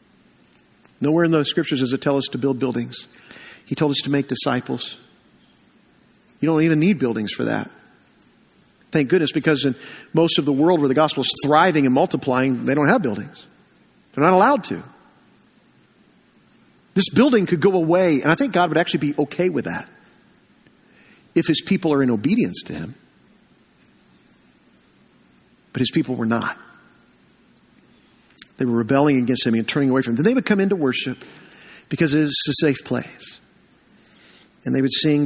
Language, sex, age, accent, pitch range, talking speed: English, male, 50-69, American, 130-155 Hz, 170 wpm